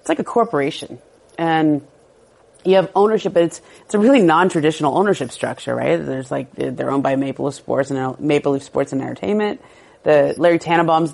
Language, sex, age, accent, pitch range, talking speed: English, female, 30-49, American, 140-185 Hz, 185 wpm